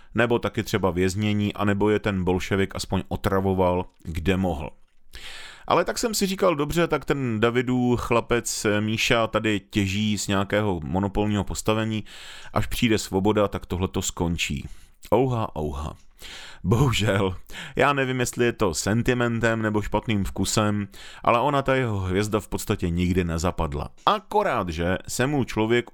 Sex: male